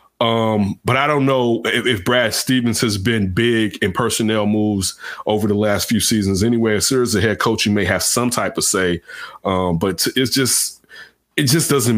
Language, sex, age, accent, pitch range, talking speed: English, male, 30-49, American, 105-125 Hz, 200 wpm